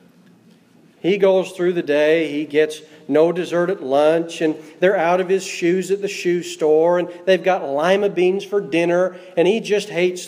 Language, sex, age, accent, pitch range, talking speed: English, male, 40-59, American, 165-205 Hz, 185 wpm